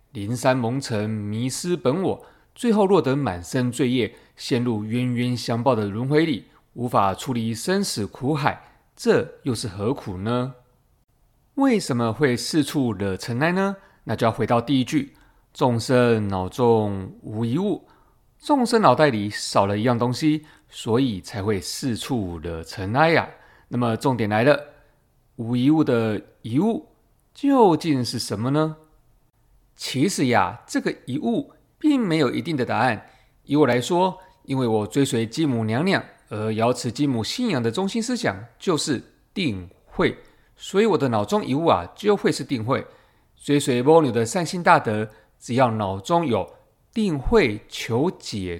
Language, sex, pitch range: Chinese, male, 115-155 Hz